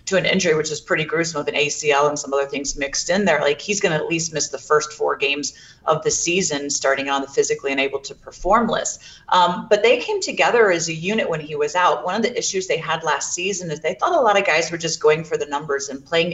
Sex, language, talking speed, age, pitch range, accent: female, English, 270 wpm, 30-49, 145-185 Hz, American